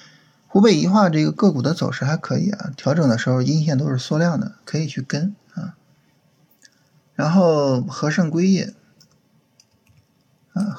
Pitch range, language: 135-180 Hz, Chinese